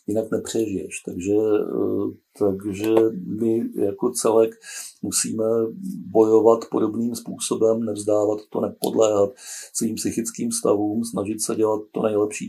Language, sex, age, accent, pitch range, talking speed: Czech, male, 50-69, native, 100-115 Hz, 105 wpm